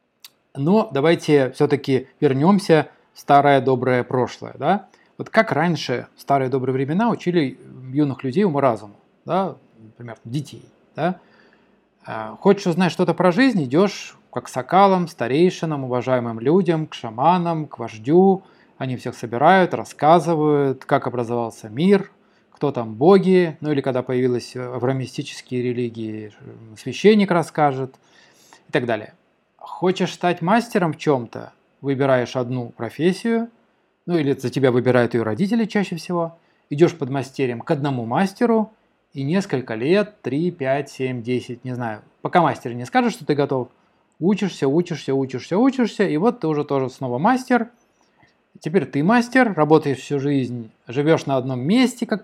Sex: male